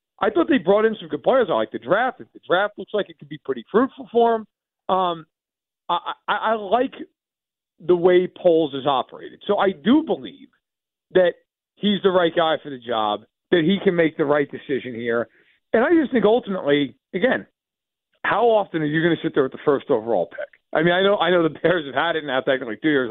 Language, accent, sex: English, American, male